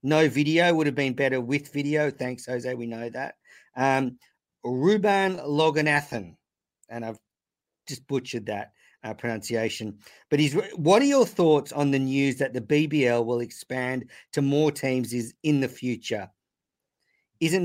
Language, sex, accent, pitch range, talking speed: English, male, Australian, 115-150 Hz, 155 wpm